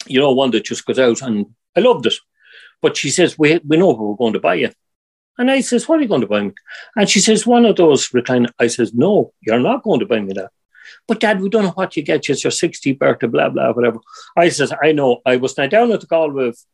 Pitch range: 115-175 Hz